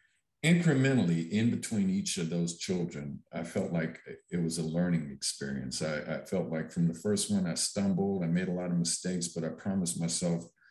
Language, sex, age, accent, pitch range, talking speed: English, male, 50-69, American, 85-105 Hz, 195 wpm